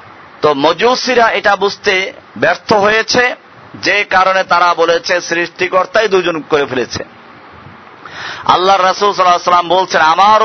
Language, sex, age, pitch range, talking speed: Bengali, male, 50-69, 180-220 Hz, 100 wpm